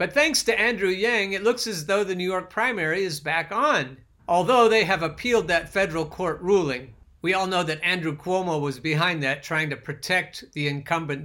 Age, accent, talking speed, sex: 50-69, American, 205 wpm, male